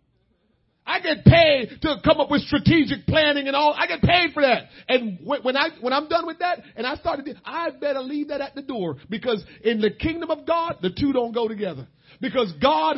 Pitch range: 235-335 Hz